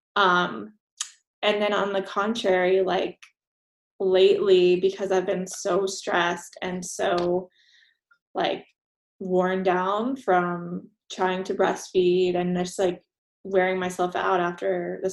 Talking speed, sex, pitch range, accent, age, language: 120 wpm, female, 180-205 Hz, American, 20-39, English